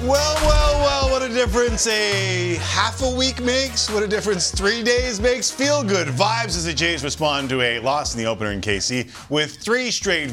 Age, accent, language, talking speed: 40-59, American, English, 205 wpm